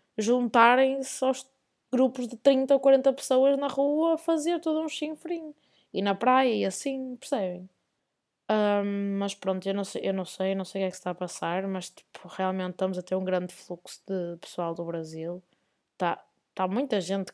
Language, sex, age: Portuguese, female, 20-39